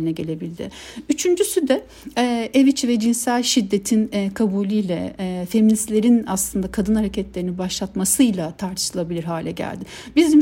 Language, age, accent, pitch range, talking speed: Turkish, 60-79, native, 195-245 Hz, 120 wpm